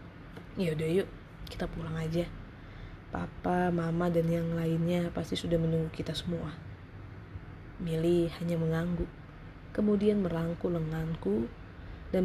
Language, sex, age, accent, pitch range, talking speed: Indonesian, female, 20-39, native, 155-170 Hz, 110 wpm